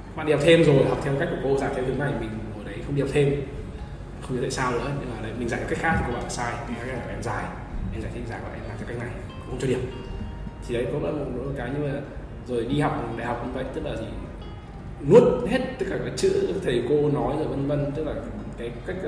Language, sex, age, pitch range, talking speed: Vietnamese, male, 20-39, 120-145 Hz, 275 wpm